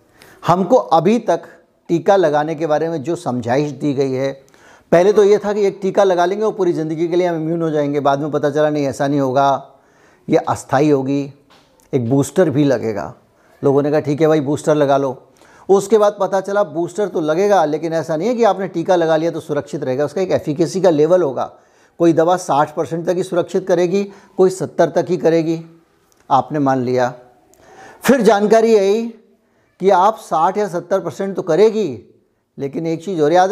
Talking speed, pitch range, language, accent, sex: 200 wpm, 145-195 Hz, Hindi, native, male